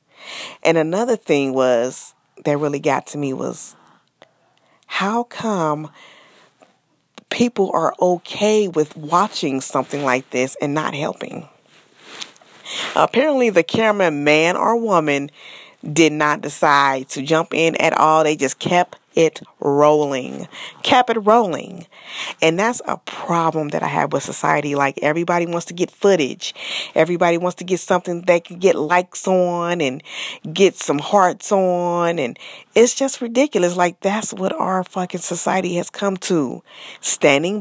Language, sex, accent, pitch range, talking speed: English, female, American, 150-195 Hz, 140 wpm